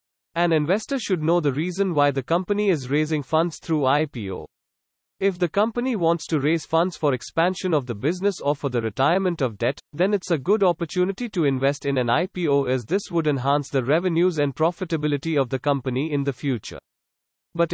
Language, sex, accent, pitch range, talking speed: English, male, Indian, 135-180 Hz, 195 wpm